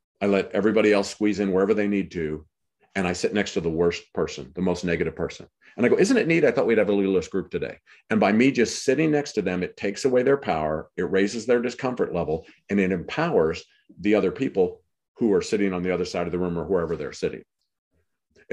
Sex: male